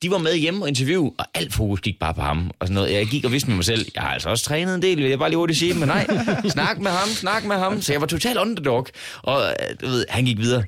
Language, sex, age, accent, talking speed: Danish, male, 30-49, native, 315 wpm